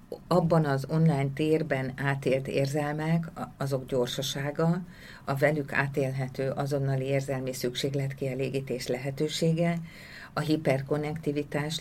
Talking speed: 85 wpm